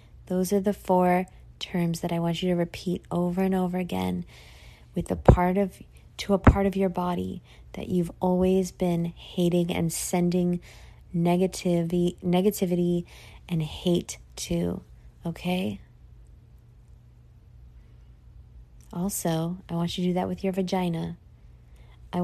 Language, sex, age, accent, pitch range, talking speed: English, female, 20-39, American, 145-185 Hz, 130 wpm